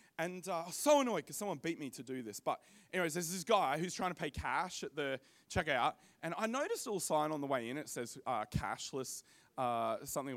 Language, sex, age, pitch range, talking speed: English, male, 20-39, 140-205 Hz, 245 wpm